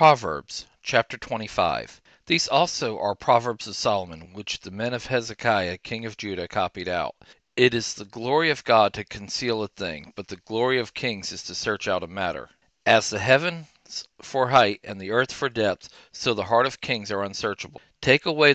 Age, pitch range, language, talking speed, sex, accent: 40-59, 105-130 Hz, English, 190 wpm, male, American